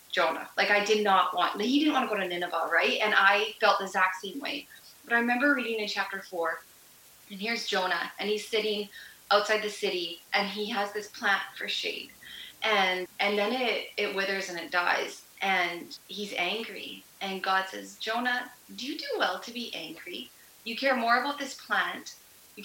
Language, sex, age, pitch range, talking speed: English, female, 20-39, 185-220 Hz, 195 wpm